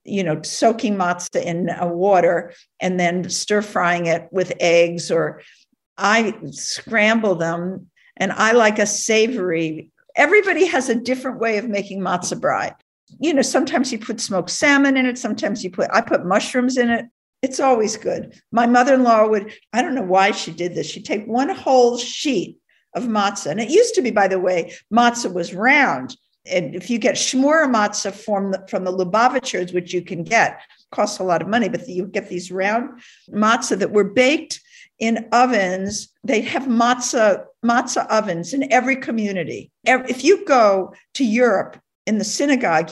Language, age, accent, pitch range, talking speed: English, 50-69, American, 185-245 Hz, 175 wpm